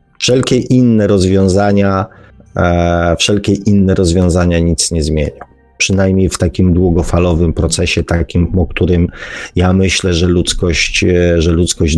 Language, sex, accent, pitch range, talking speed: Polish, male, native, 90-110 Hz, 110 wpm